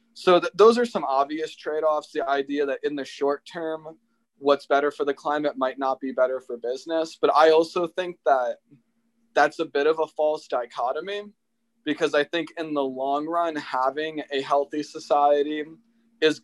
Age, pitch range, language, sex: 20-39, 140-170 Hz, English, male